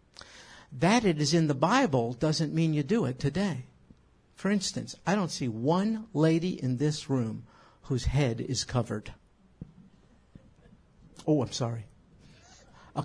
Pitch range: 130-170 Hz